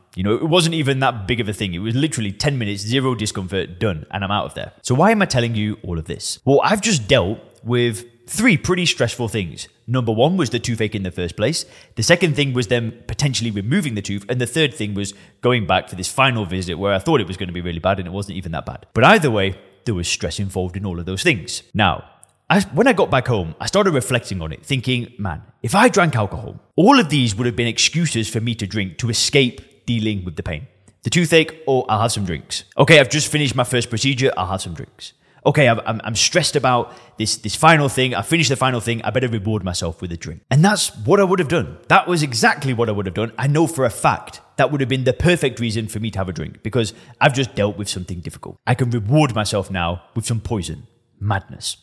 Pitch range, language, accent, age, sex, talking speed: 100-140 Hz, English, British, 20-39, male, 255 wpm